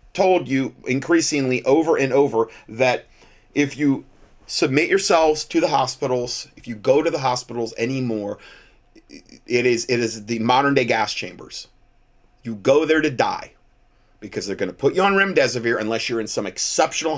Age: 30-49